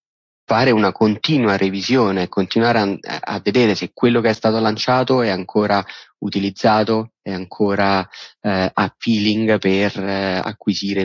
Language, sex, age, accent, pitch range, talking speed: Italian, male, 30-49, native, 95-110 Hz, 130 wpm